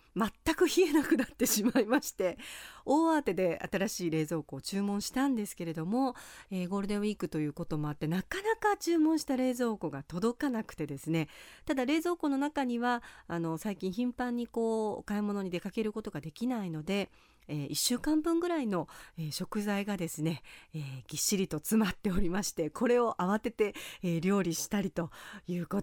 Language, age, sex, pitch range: Japanese, 40-59, female, 165-245 Hz